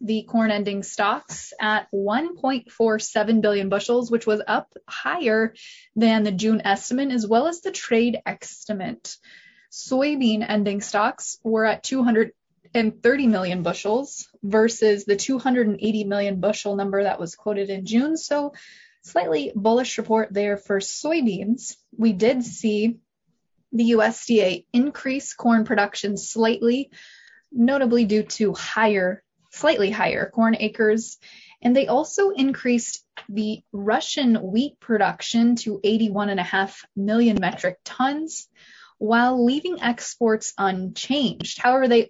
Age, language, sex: 20-39, English, female